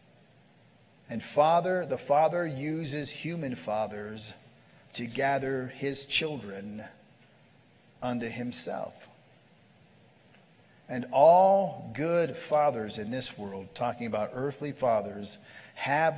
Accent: American